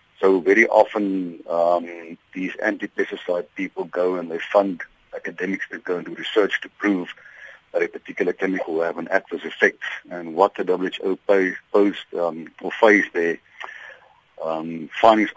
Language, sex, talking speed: English, male, 150 wpm